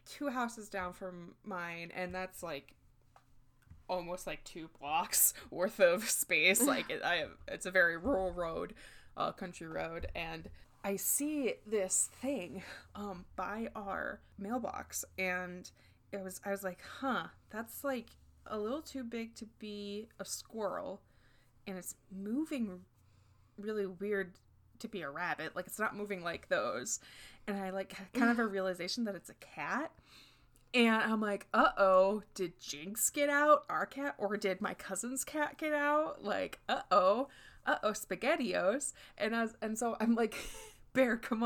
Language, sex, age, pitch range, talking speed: English, female, 20-39, 185-230 Hz, 155 wpm